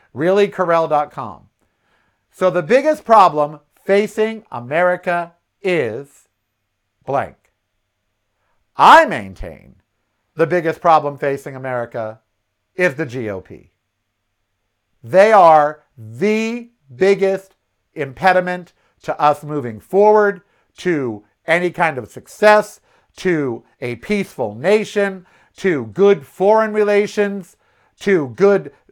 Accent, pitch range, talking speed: American, 130-200 Hz, 90 wpm